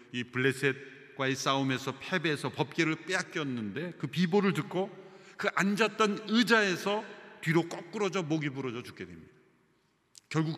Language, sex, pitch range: Korean, male, 125-180 Hz